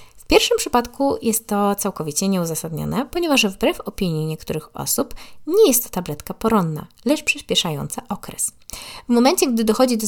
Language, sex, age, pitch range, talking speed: Polish, female, 20-39, 165-230 Hz, 150 wpm